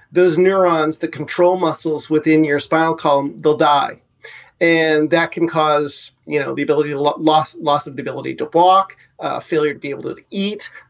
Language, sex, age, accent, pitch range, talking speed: English, male, 40-59, American, 145-165 Hz, 195 wpm